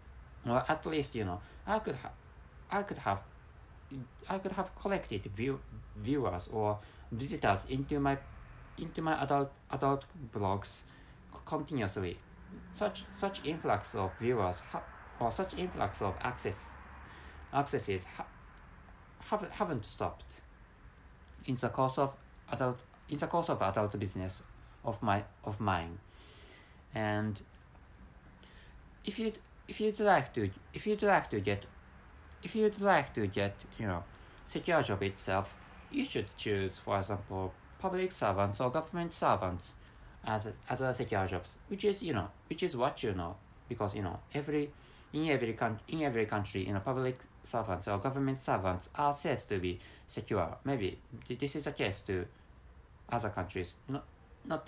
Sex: male